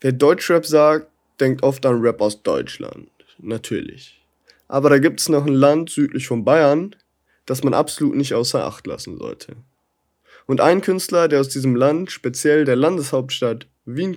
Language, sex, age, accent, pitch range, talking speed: German, male, 20-39, German, 125-155 Hz, 165 wpm